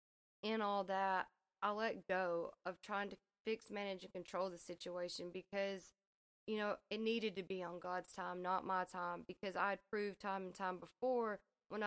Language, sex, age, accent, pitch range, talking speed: English, female, 20-39, American, 180-200 Hz, 180 wpm